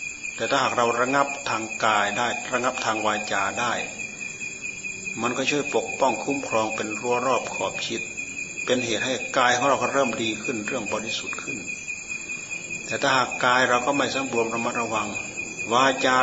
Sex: male